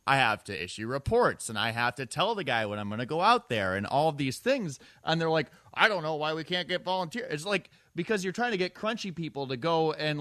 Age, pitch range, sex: 30-49, 120-170 Hz, male